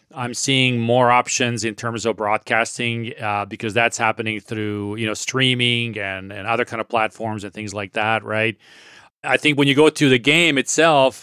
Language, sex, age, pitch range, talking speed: English, male, 30-49, 110-140 Hz, 190 wpm